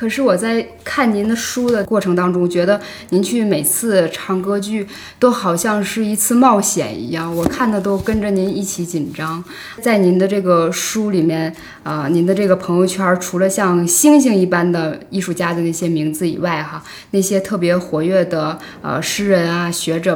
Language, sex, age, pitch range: Chinese, female, 20-39, 165-220 Hz